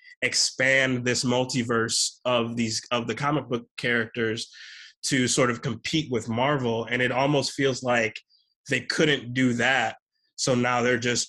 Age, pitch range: 20-39, 120-150 Hz